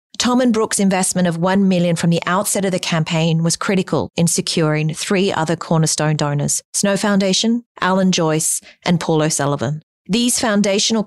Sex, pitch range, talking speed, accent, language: female, 160-195 Hz, 165 wpm, Australian, English